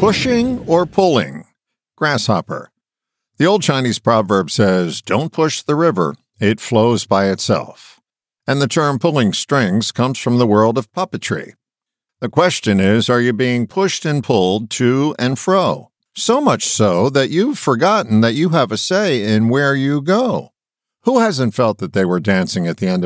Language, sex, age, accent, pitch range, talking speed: English, male, 50-69, American, 110-170 Hz, 170 wpm